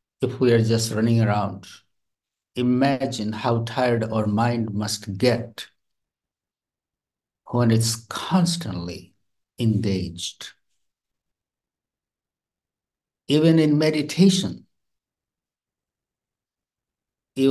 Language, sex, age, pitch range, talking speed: English, male, 60-79, 105-140 Hz, 70 wpm